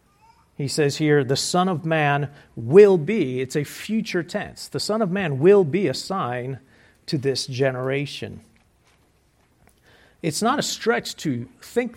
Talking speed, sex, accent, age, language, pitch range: 150 wpm, male, American, 40-59, English, 140-215 Hz